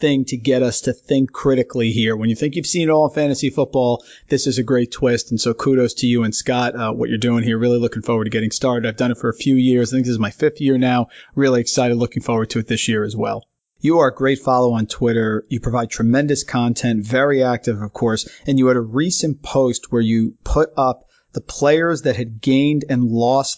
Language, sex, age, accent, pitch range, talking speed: English, male, 40-59, American, 120-135 Hz, 250 wpm